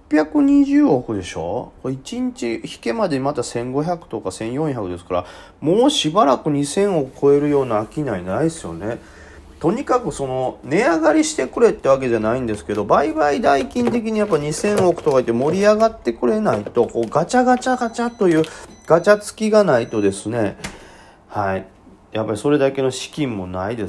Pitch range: 115-190 Hz